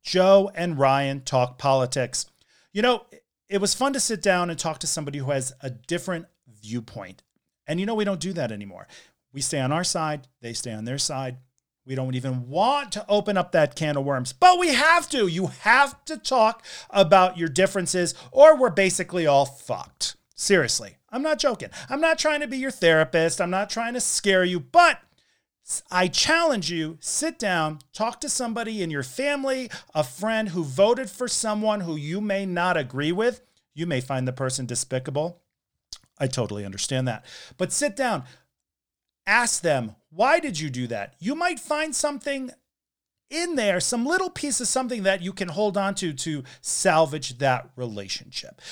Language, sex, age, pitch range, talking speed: English, male, 40-59, 140-235 Hz, 180 wpm